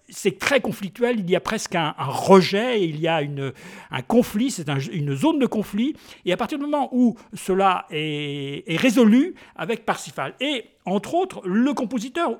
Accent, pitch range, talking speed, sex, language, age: French, 165-235 Hz, 190 wpm, male, French, 50-69